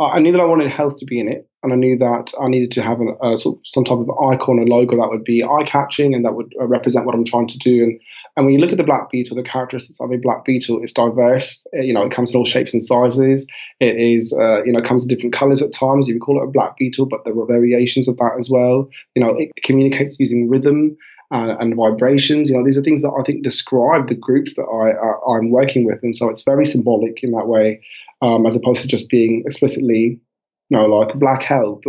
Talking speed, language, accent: 270 wpm, English, British